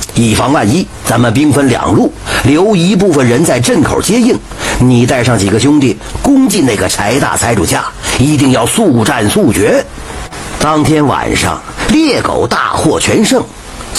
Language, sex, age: Chinese, male, 50-69